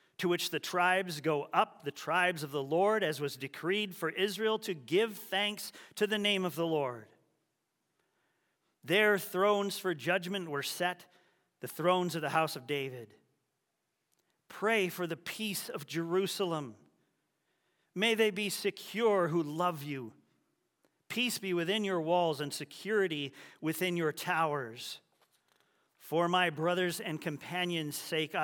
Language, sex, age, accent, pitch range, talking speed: English, male, 40-59, American, 145-185 Hz, 140 wpm